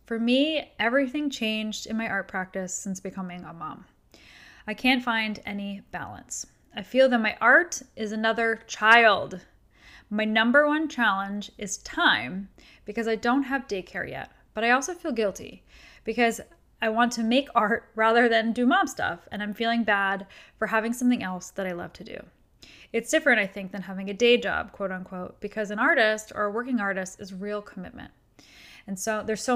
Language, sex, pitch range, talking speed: English, female, 195-235 Hz, 185 wpm